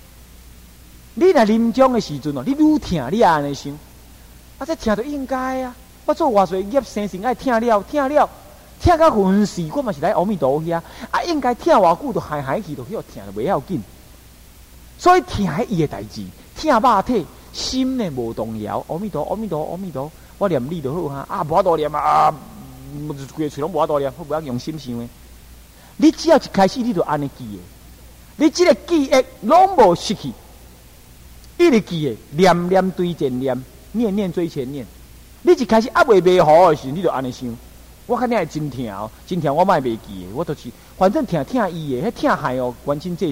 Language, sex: Chinese, male